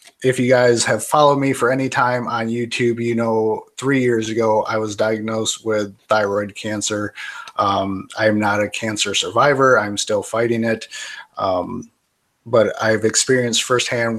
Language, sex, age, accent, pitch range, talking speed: English, male, 30-49, American, 110-125 Hz, 160 wpm